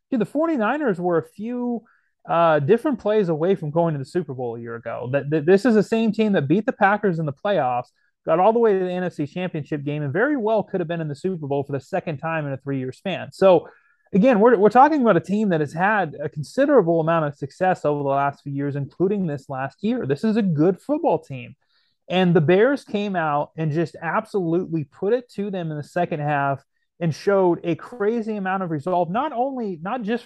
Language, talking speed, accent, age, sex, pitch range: English, 235 wpm, American, 30-49, male, 150-205 Hz